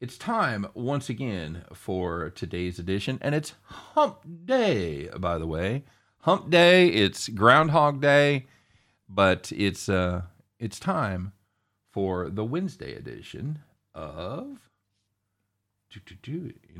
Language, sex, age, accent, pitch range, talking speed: English, male, 50-69, American, 100-165 Hz, 105 wpm